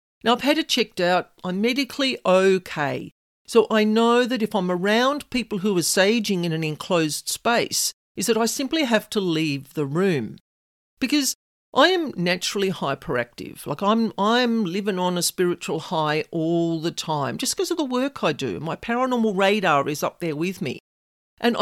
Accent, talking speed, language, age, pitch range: Australian, 180 wpm, English, 50-69, 175-250 Hz